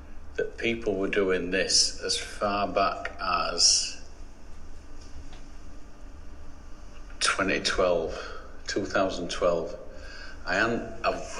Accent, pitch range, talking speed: British, 75-100 Hz, 65 wpm